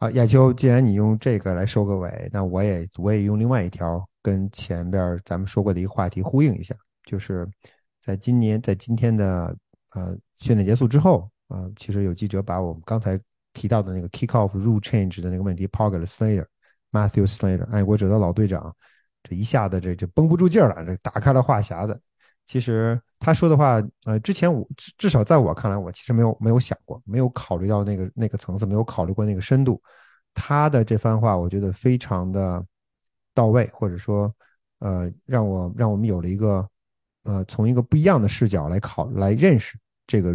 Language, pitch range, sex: Chinese, 95-120 Hz, male